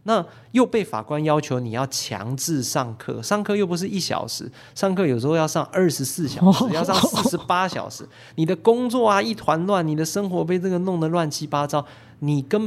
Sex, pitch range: male, 130-175 Hz